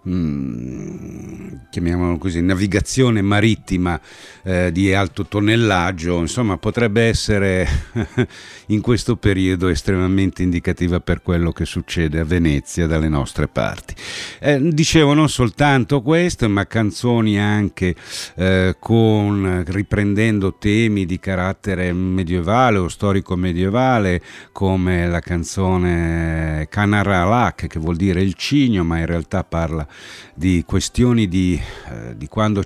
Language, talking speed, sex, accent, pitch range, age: Italian, 110 wpm, male, native, 85-105 Hz, 50-69